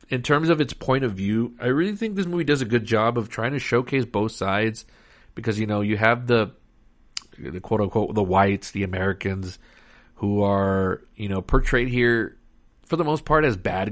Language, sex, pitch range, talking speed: English, male, 100-120 Hz, 205 wpm